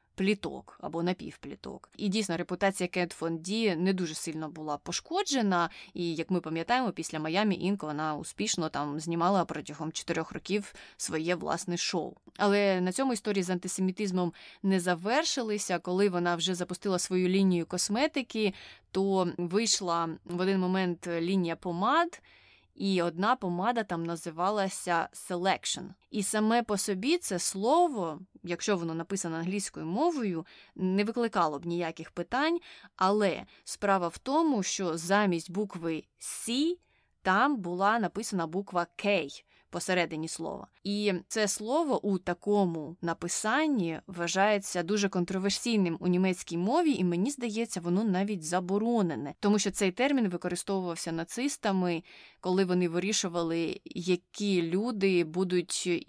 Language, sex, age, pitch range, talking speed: Ukrainian, female, 20-39, 175-205 Hz, 125 wpm